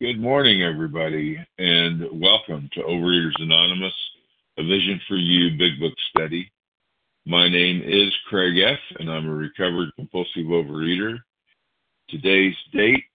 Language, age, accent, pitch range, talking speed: English, 50-69, American, 80-100 Hz, 130 wpm